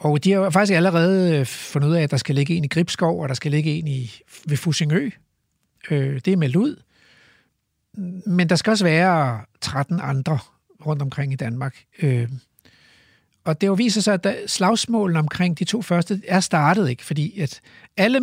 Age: 60-79